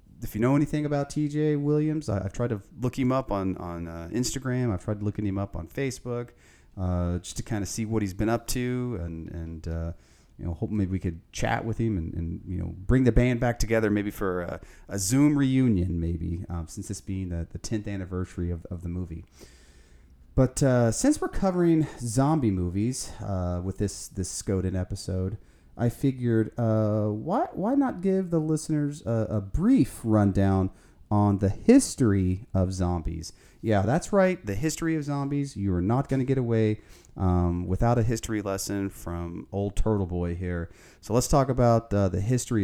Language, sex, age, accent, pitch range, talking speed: English, male, 30-49, American, 90-120 Hz, 195 wpm